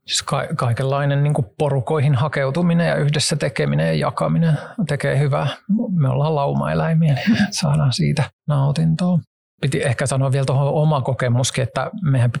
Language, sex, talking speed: Finnish, male, 130 wpm